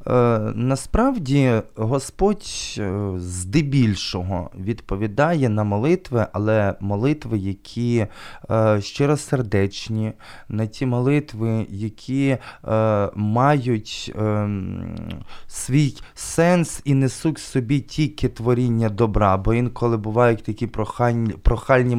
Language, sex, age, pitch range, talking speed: Ukrainian, male, 20-39, 100-120 Hz, 80 wpm